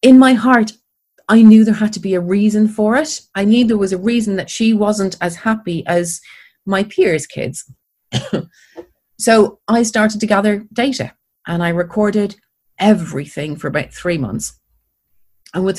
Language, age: English, 30-49